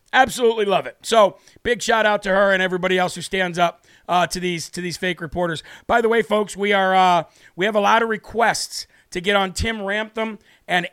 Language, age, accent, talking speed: English, 40-59, American, 225 wpm